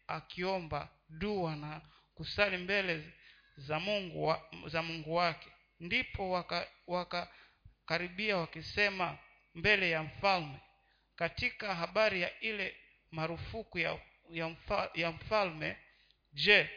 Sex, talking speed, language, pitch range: male, 95 wpm, Swahili, 160-205 Hz